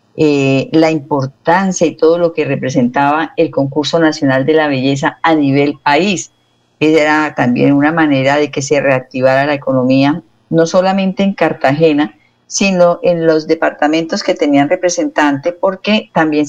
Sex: female